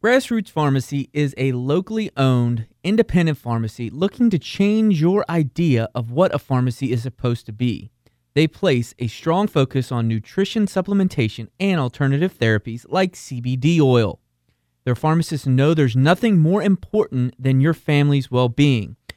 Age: 30-49